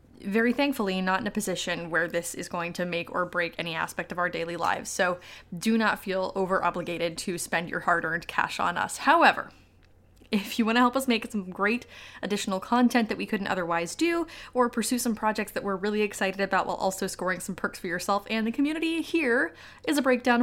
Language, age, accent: English, 20-39, American